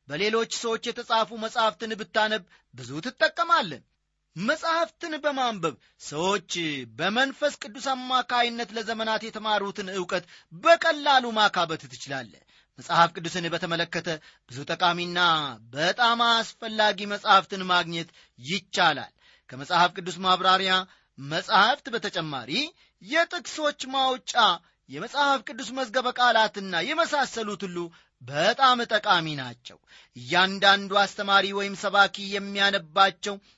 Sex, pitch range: male, 170-235 Hz